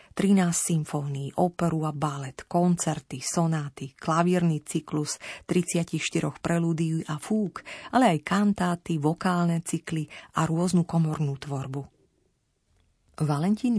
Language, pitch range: Slovak, 150-185 Hz